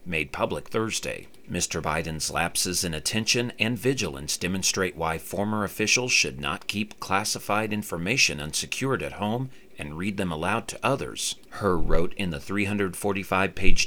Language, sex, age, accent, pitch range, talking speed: English, male, 40-59, American, 80-110 Hz, 145 wpm